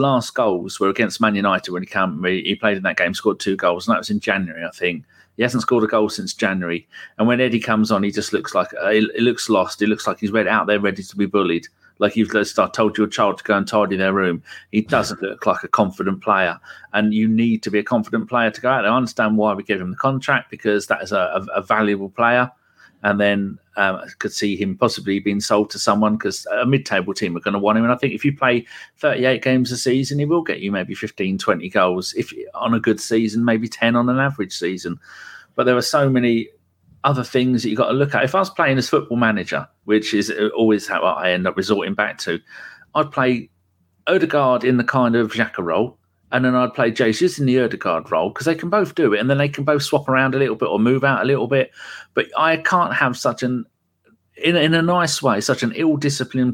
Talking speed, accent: 250 wpm, British